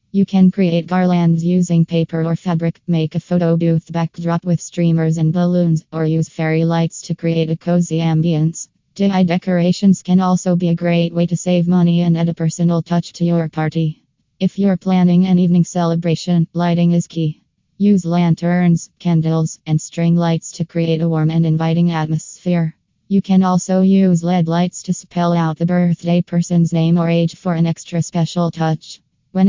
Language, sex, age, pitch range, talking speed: English, female, 20-39, 160-175 Hz, 180 wpm